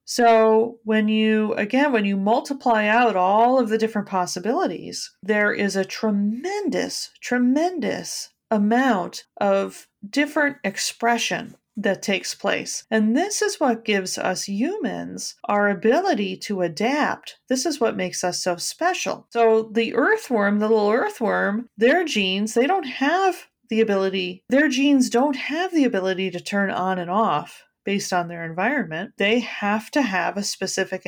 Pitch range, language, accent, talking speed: 195-235 Hz, English, American, 150 wpm